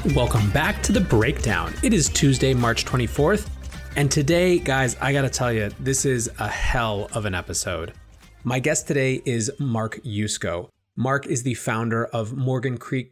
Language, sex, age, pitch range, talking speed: English, male, 30-49, 110-135 Hz, 175 wpm